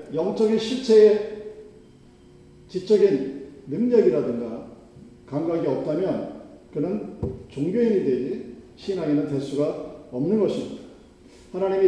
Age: 40-59